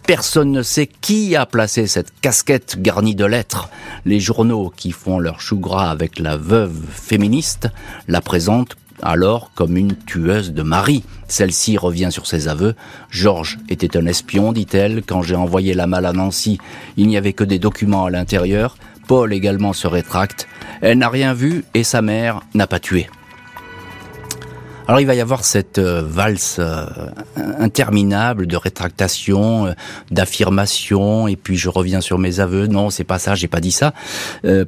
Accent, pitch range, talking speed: French, 90-115 Hz, 170 wpm